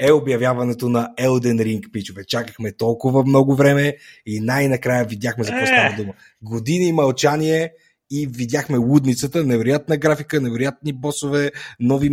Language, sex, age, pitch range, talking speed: Bulgarian, male, 30-49, 120-150 Hz, 135 wpm